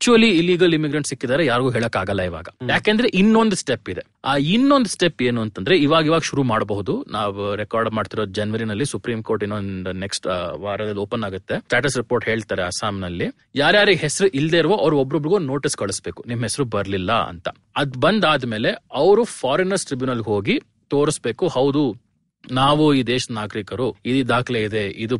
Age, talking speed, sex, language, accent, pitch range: 30-49, 145 wpm, male, Kannada, native, 115-175 Hz